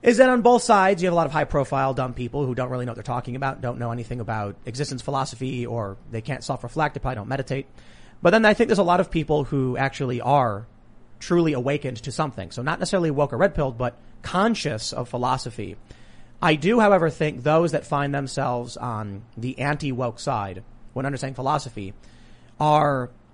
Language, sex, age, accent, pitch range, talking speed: English, male, 30-49, American, 115-150 Hz, 200 wpm